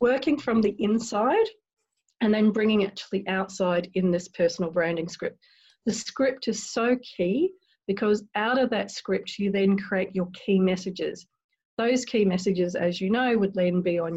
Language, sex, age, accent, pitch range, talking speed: English, female, 40-59, Australian, 180-220 Hz, 180 wpm